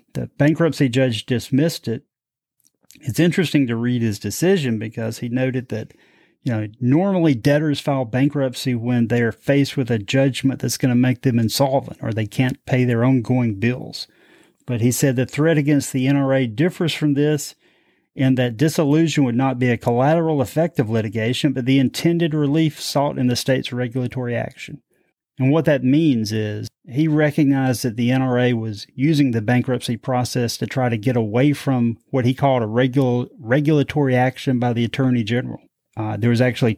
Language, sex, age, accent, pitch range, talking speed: English, male, 30-49, American, 120-140 Hz, 180 wpm